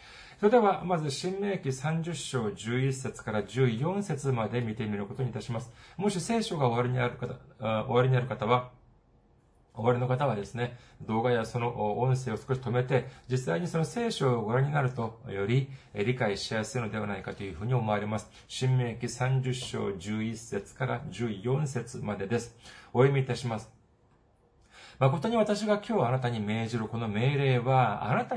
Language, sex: Japanese, male